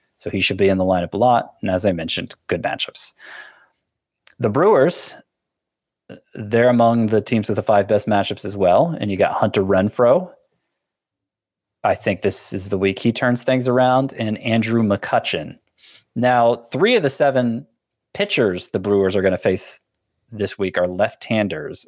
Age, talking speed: 30-49, 170 wpm